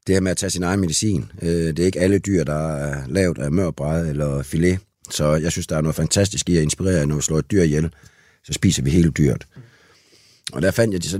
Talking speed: 250 wpm